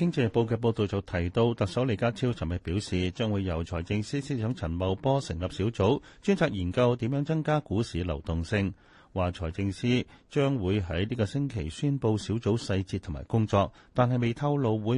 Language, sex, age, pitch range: Chinese, male, 30-49, 90-125 Hz